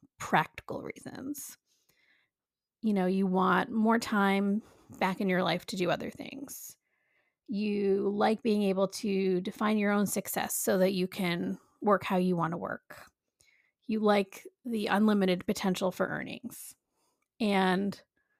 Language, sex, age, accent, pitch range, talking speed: English, female, 30-49, American, 190-245 Hz, 140 wpm